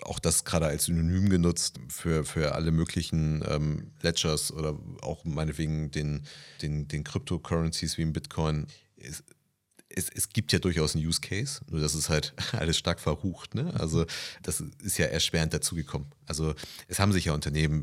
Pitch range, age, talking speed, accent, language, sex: 75-90 Hz, 30-49, 170 wpm, German, German, male